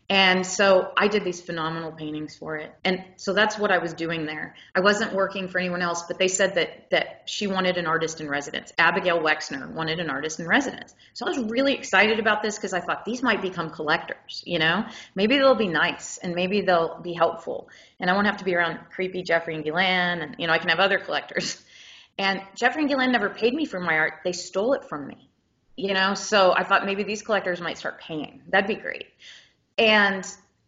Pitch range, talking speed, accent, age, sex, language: 180-225 Hz, 225 wpm, American, 30-49, female, English